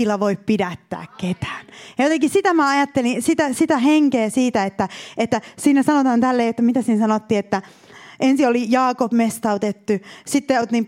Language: Finnish